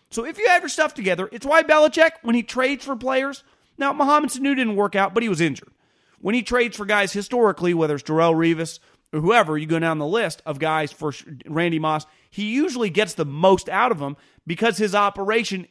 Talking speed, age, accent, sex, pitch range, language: 220 wpm, 30-49, American, male, 155-215 Hz, English